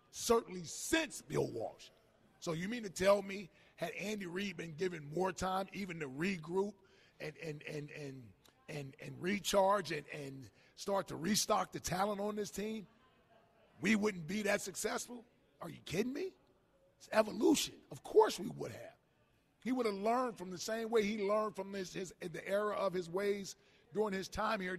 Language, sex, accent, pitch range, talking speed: English, male, American, 175-220 Hz, 180 wpm